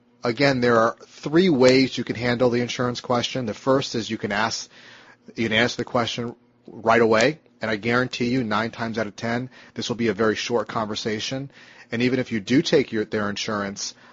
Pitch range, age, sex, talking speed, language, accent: 105-125 Hz, 30-49, male, 210 wpm, English, American